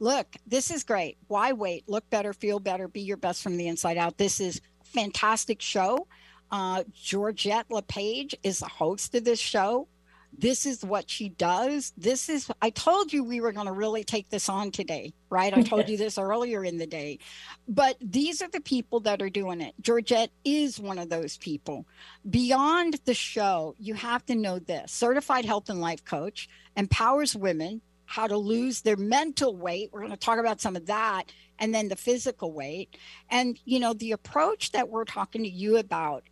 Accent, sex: American, female